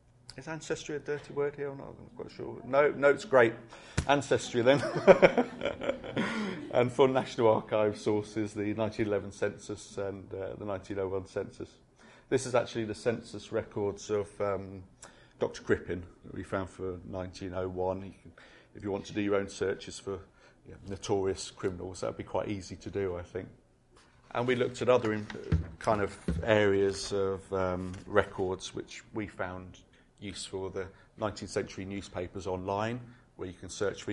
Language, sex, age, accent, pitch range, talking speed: English, male, 30-49, British, 95-110 Hz, 170 wpm